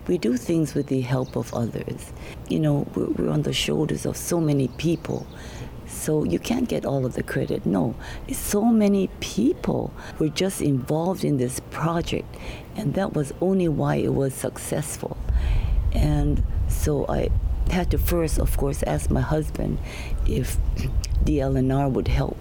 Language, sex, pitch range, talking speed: English, female, 105-155 Hz, 160 wpm